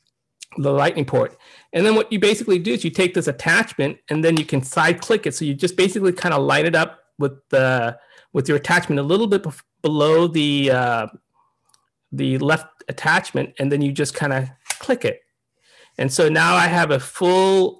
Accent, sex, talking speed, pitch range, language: American, male, 200 wpm, 135-175 Hz, English